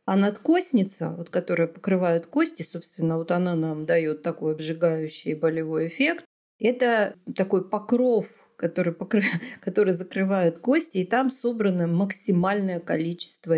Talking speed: 125 wpm